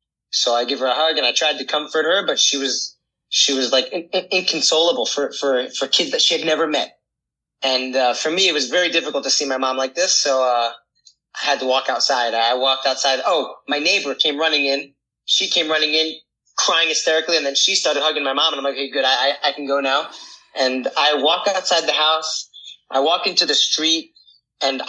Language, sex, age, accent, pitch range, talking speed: English, male, 30-49, American, 130-160 Hz, 230 wpm